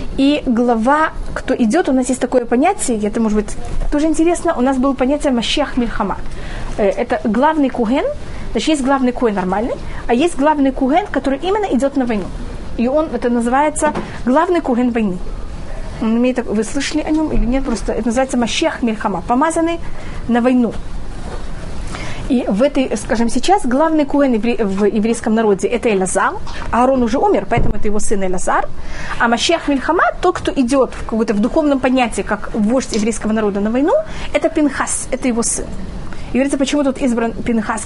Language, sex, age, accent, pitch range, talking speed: Russian, female, 30-49, native, 230-295 Hz, 170 wpm